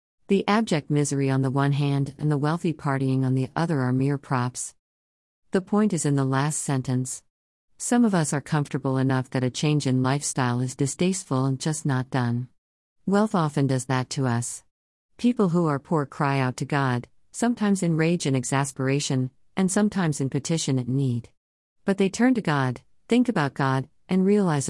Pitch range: 130-165 Hz